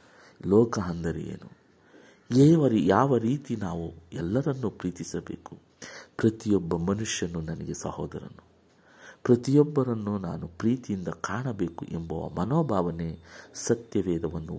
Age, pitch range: 50-69, 85-120 Hz